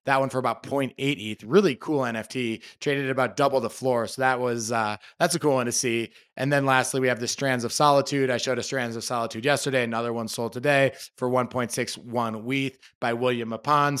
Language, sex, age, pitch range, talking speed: English, male, 20-39, 120-150 Hz, 215 wpm